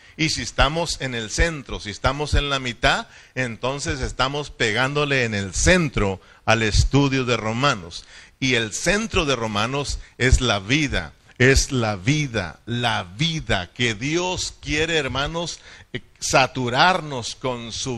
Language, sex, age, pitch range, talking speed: Spanish, male, 50-69, 115-150 Hz, 135 wpm